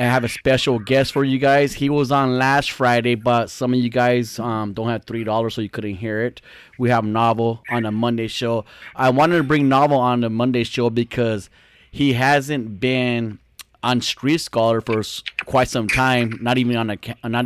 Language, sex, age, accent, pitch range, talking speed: English, male, 20-39, American, 105-125 Hz, 190 wpm